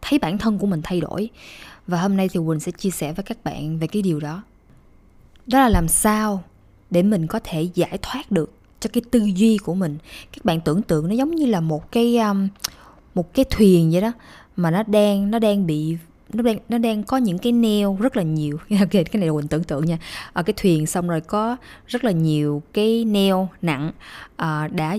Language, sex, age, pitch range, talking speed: Vietnamese, female, 20-39, 160-215 Hz, 220 wpm